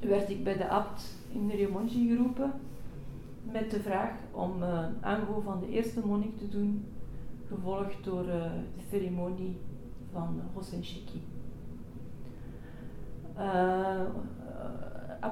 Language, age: Dutch, 40-59